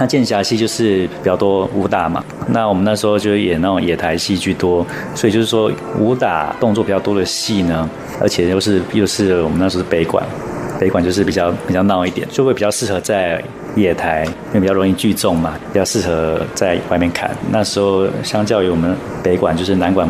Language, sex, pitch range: Chinese, male, 90-105 Hz